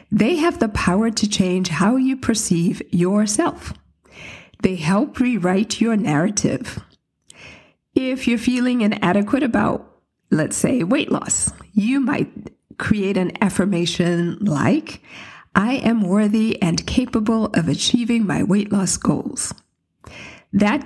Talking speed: 120 wpm